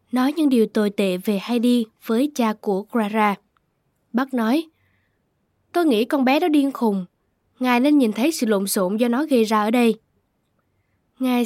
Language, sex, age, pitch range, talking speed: Vietnamese, female, 10-29, 215-260 Hz, 180 wpm